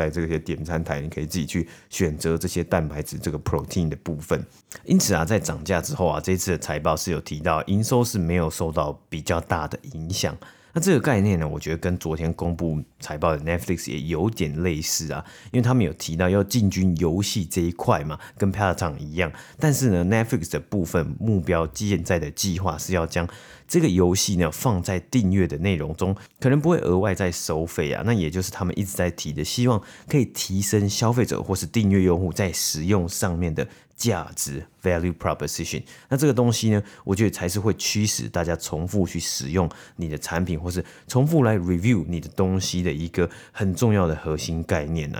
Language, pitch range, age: Chinese, 80-100 Hz, 30-49